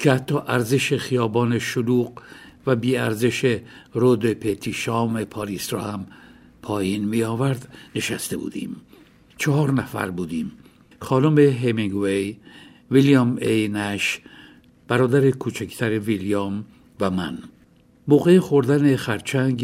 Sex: male